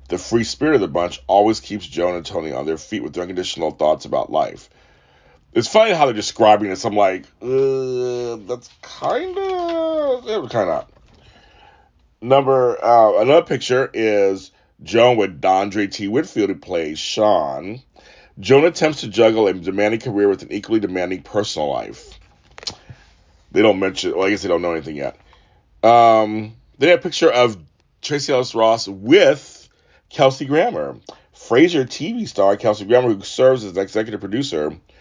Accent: American